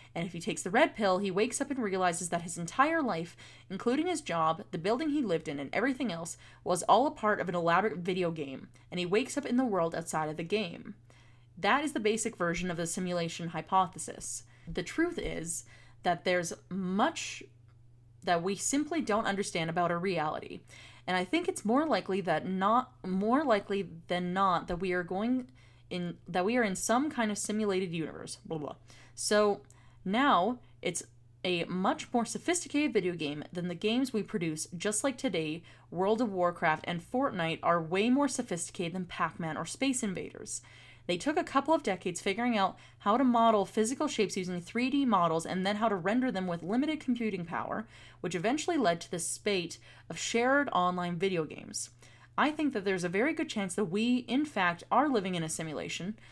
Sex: female